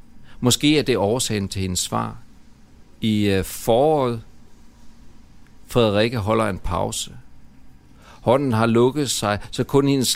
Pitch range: 105-130 Hz